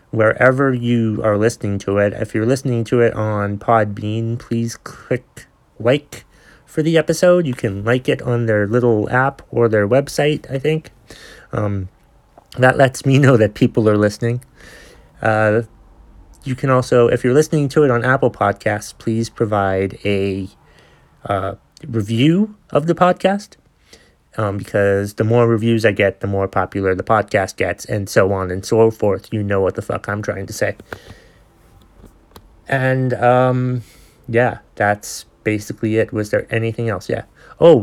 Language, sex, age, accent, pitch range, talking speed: English, male, 30-49, American, 100-125 Hz, 160 wpm